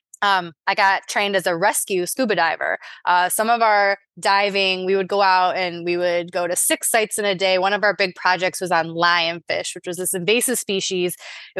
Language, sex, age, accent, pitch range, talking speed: English, female, 20-39, American, 180-220 Hz, 215 wpm